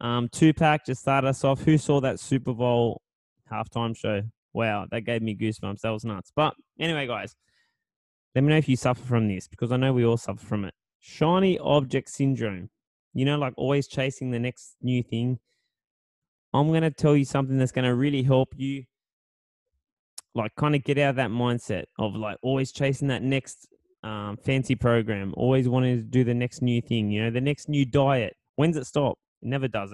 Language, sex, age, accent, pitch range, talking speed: English, male, 10-29, Australian, 115-140 Hz, 205 wpm